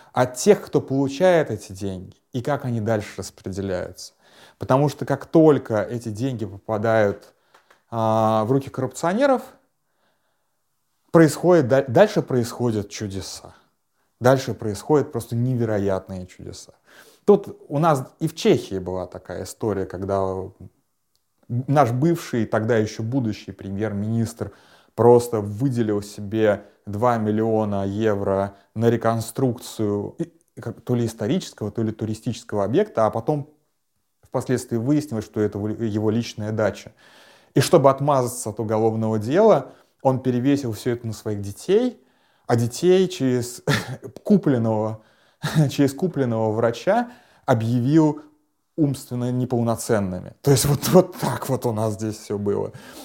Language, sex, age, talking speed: Russian, male, 20-39, 120 wpm